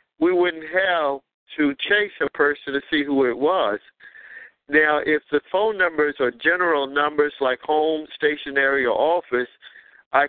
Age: 50-69